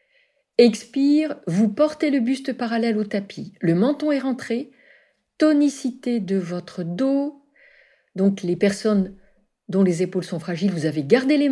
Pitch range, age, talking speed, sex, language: 210-285 Hz, 50-69, 145 wpm, female, French